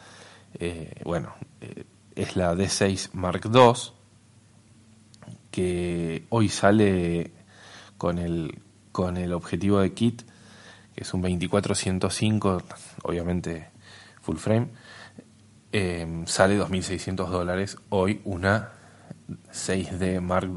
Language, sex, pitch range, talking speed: Spanish, male, 90-110 Hz, 100 wpm